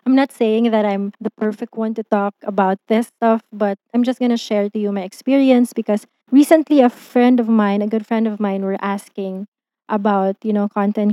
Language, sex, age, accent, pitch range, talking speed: English, female, 20-39, Filipino, 205-250 Hz, 215 wpm